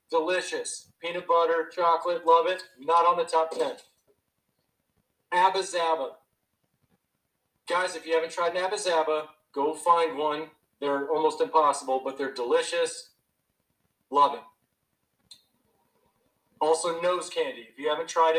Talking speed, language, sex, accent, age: 125 wpm, English, male, American, 40-59